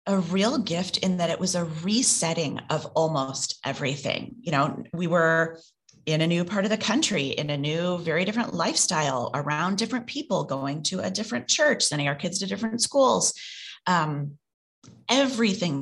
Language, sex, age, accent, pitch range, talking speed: English, female, 30-49, American, 160-220 Hz, 170 wpm